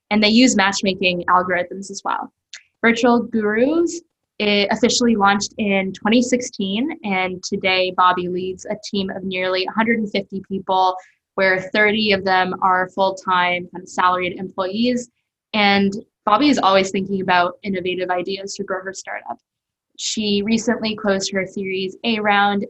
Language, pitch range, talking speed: English, 190-210 Hz, 135 wpm